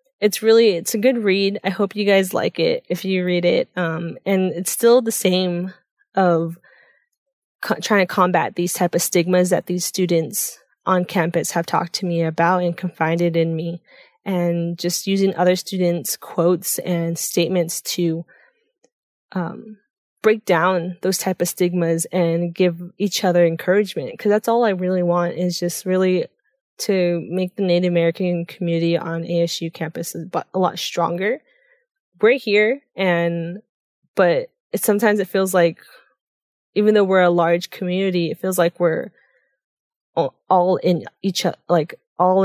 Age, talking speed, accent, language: 10-29, 160 wpm, American, English